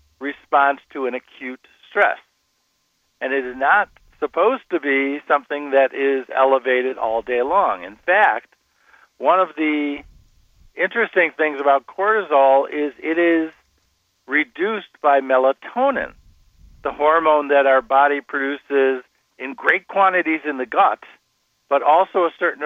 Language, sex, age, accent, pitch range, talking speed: English, male, 50-69, American, 130-150 Hz, 130 wpm